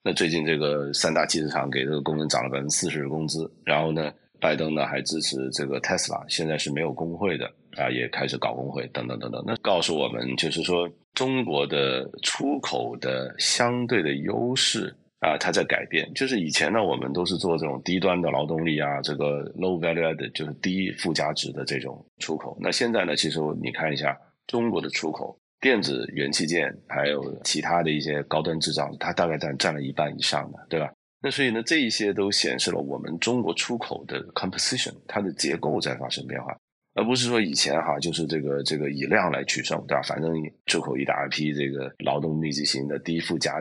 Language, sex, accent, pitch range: Chinese, male, native, 70-85 Hz